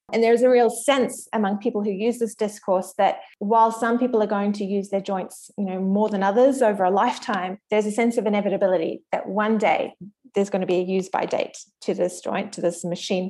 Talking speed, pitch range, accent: 230 wpm, 190-230 Hz, Australian